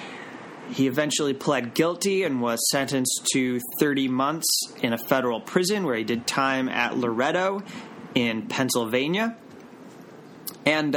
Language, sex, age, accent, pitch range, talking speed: English, male, 30-49, American, 125-150 Hz, 125 wpm